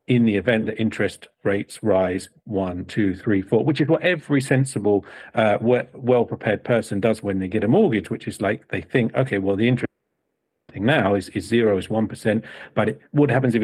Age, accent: 50-69, British